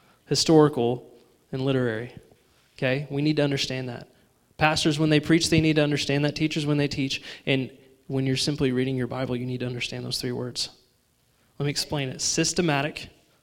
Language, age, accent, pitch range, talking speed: English, 20-39, American, 130-155 Hz, 185 wpm